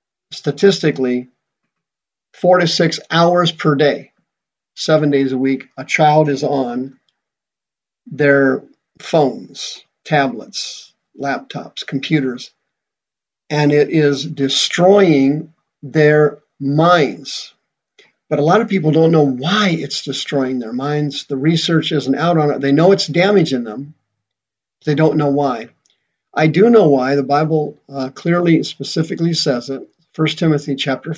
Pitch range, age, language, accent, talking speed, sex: 140-170 Hz, 50-69, English, American, 130 wpm, male